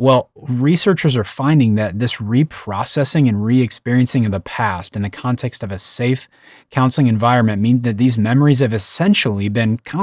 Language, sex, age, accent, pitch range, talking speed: English, male, 30-49, American, 105-135 Hz, 170 wpm